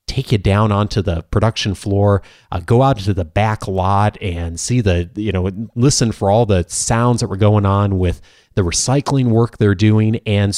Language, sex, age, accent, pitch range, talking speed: English, male, 30-49, American, 95-115 Hz, 200 wpm